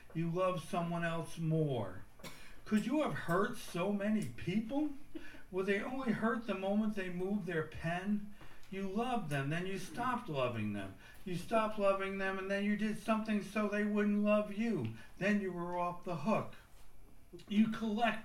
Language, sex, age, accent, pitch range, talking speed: English, male, 60-79, American, 165-215 Hz, 170 wpm